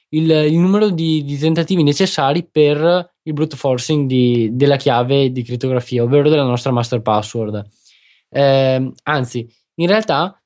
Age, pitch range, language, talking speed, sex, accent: 20-39, 125-155 Hz, Italian, 145 wpm, male, native